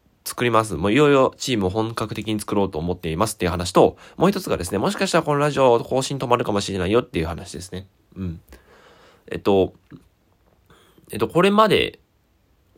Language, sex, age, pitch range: Japanese, male, 20-39, 95-150 Hz